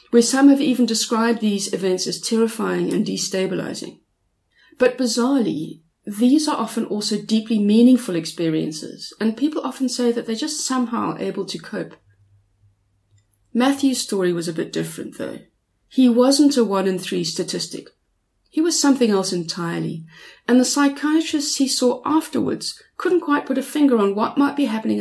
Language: English